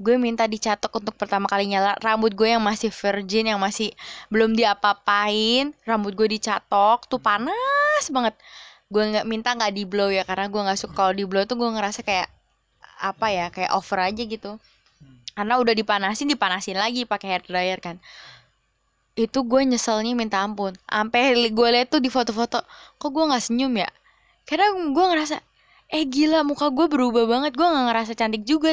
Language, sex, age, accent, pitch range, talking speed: Indonesian, female, 20-39, native, 200-265 Hz, 170 wpm